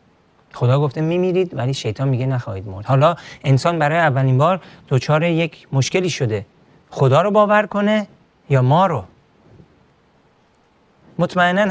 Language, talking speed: Persian, 125 wpm